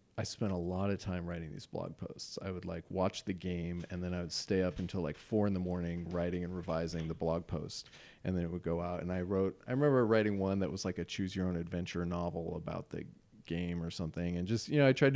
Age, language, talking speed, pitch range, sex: 30-49, English, 265 wpm, 90-115 Hz, male